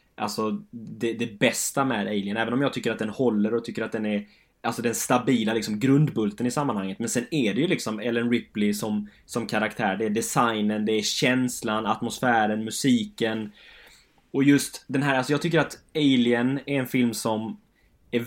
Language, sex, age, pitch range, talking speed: Swedish, male, 10-29, 110-140 Hz, 190 wpm